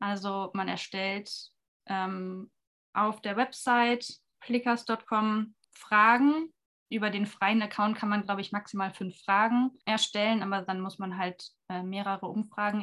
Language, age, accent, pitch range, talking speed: German, 20-39, German, 195-225 Hz, 135 wpm